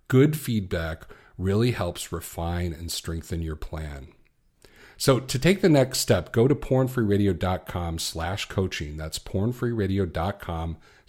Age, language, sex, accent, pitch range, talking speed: 40-59, English, male, American, 90-125 Hz, 115 wpm